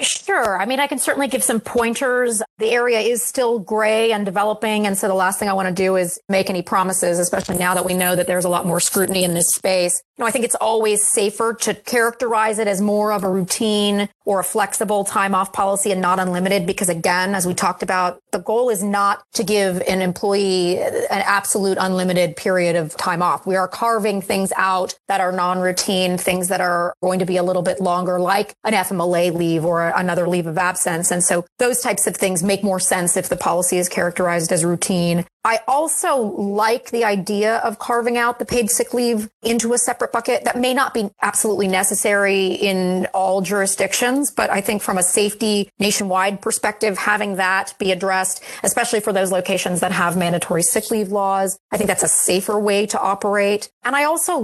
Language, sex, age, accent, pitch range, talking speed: English, female, 30-49, American, 185-220 Hz, 210 wpm